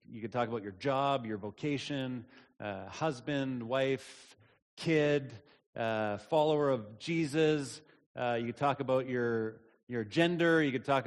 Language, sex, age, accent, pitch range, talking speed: English, male, 30-49, American, 125-155 Hz, 145 wpm